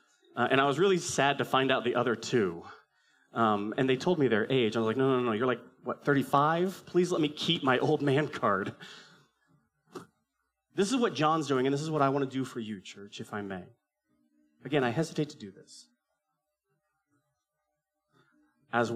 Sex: male